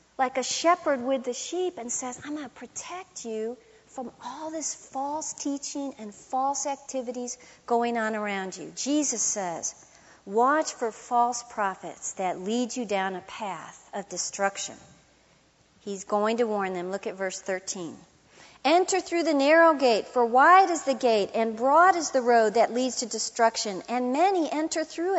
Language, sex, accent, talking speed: English, female, American, 170 wpm